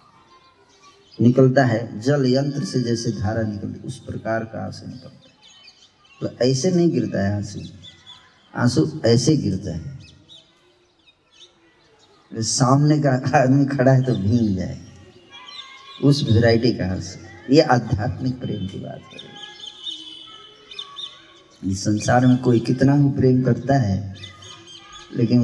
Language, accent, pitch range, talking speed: Hindi, native, 110-150 Hz, 120 wpm